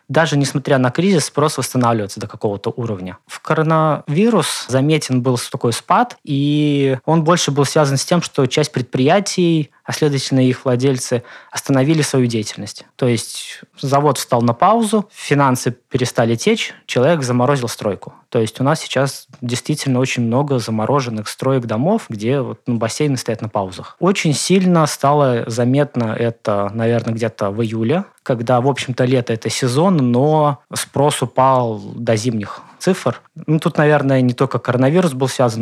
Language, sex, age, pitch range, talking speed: Russian, male, 20-39, 115-150 Hz, 150 wpm